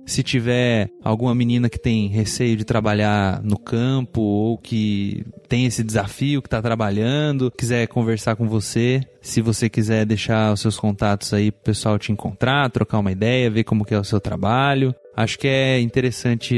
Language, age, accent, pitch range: Portuguese, 20-39, Brazilian, 115-140 Hz